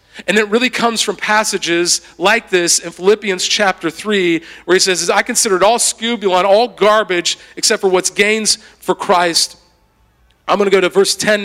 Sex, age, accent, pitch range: male, 40-59, American, 170-215 Hz